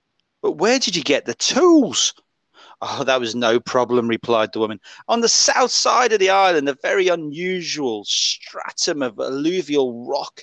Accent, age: British, 40-59